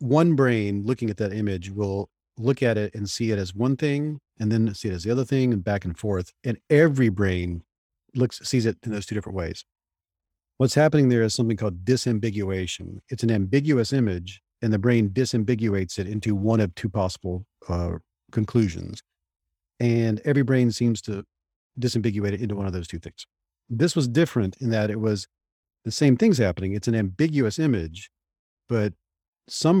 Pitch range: 95-125 Hz